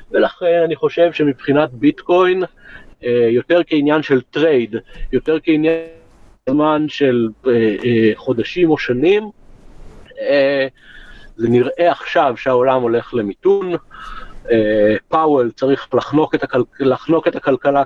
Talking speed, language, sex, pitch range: 105 wpm, Hebrew, male, 120-170 Hz